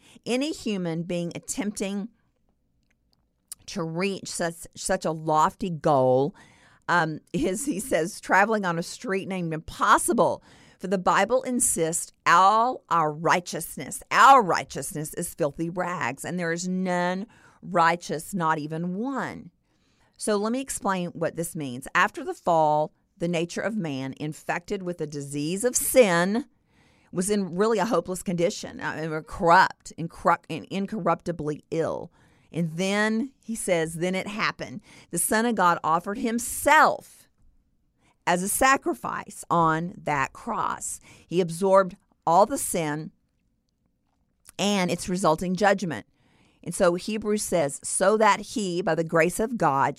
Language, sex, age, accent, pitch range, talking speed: English, female, 50-69, American, 165-210 Hz, 135 wpm